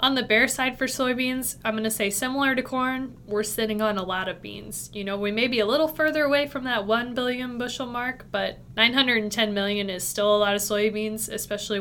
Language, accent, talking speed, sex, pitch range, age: English, American, 230 wpm, female, 200-240 Hz, 20-39